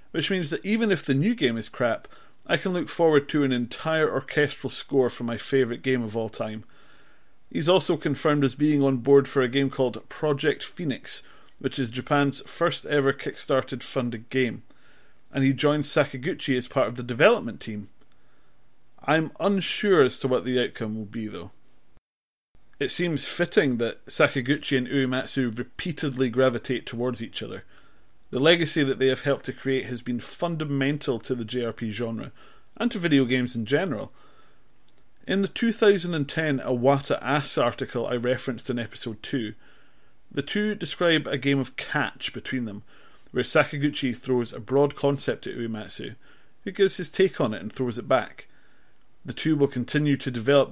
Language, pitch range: English, 125-150 Hz